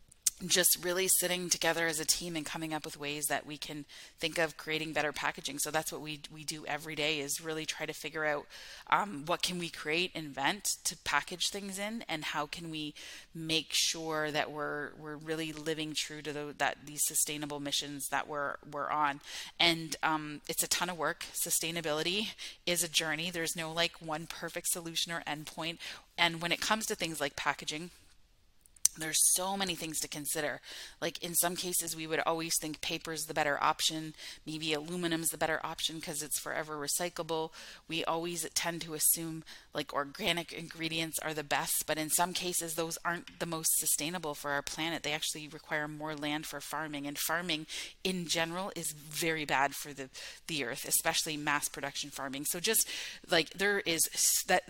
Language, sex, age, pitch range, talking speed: English, female, 30-49, 150-170 Hz, 190 wpm